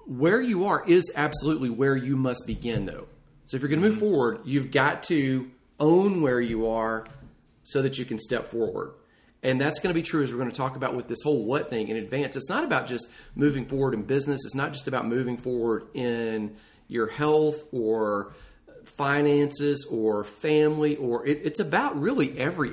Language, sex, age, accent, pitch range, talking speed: English, male, 40-59, American, 120-145 Hz, 200 wpm